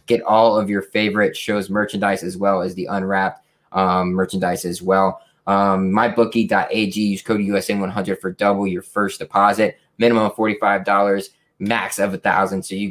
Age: 20-39